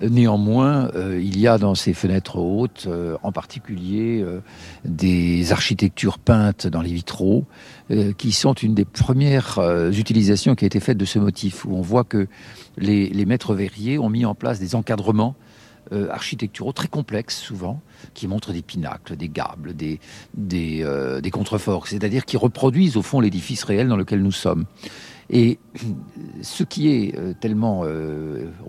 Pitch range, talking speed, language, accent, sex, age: 95-120 Hz, 165 wpm, French, French, male, 50-69